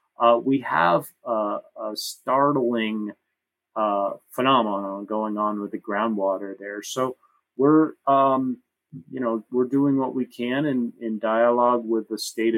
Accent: American